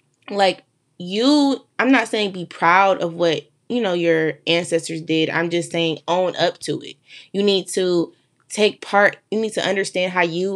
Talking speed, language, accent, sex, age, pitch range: 180 wpm, English, American, female, 20-39, 165-200 Hz